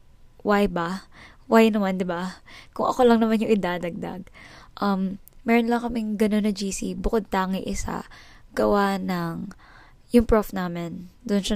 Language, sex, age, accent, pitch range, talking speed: Filipino, female, 20-39, native, 190-230 Hz, 150 wpm